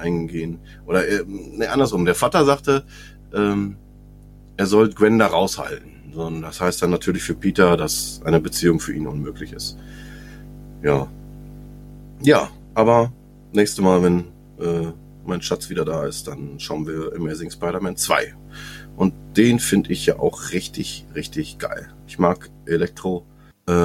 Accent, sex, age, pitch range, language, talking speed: German, male, 30-49, 85-110 Hz, German, 145 wpm